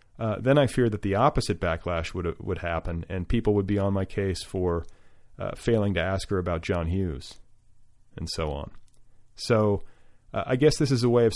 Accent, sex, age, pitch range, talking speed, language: American, male, 40-59, 95-115 Hz, 205 wpm, English